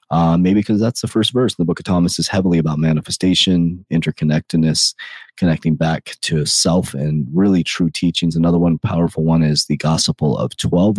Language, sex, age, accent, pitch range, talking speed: English, male, 30-49, American, 80-100 Hz, 180 wpm